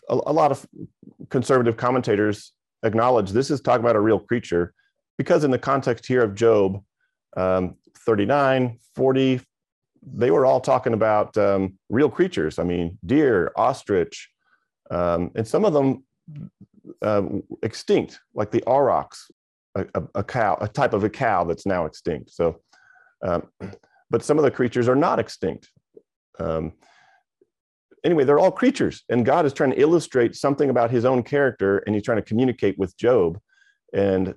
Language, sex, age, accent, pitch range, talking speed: English, male, 40-59, American, 100-140 Hz, 160 wpm